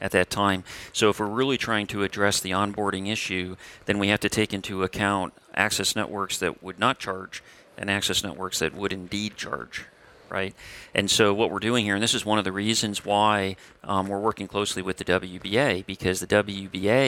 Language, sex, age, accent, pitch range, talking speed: English, male, 40-59, American, 95-105 Hz, 205 wpm